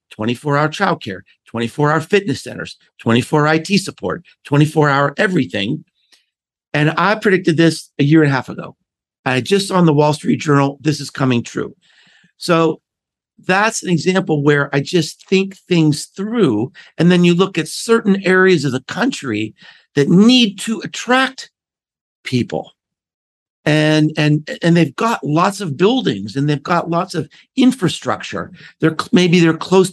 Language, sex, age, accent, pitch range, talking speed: English, male, 50-69, American, 145-185 Hz, 150 wpm